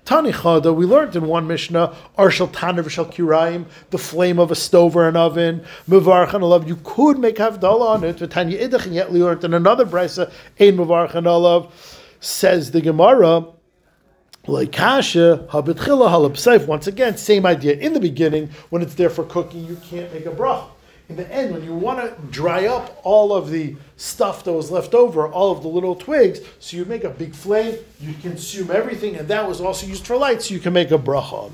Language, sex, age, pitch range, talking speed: English, male, 50-69, 155-195 Hz, 190 wpm